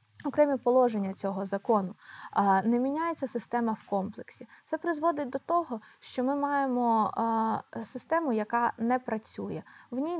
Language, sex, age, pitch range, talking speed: Ukrainian, female, 20-39, 210-265 Hz, 135 wpm